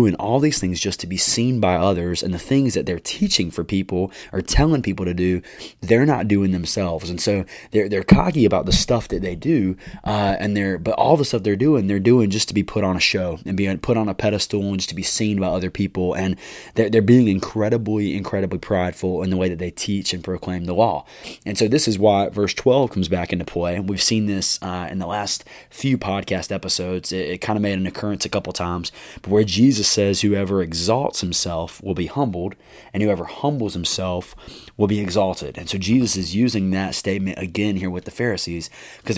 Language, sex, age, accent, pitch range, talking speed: English, male, 20-39, American, 90-110 Hz, 230 wpm